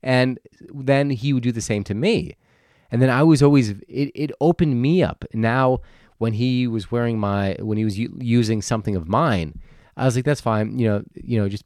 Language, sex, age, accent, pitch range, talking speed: English, male, 30-49, American, 100-130 Hz, 220 wpm